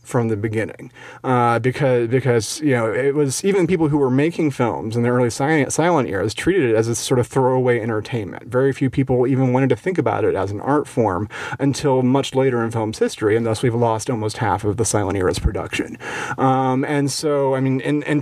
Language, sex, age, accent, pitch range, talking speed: English, male, 40-59, American, 115-145 Hz, 220 wpm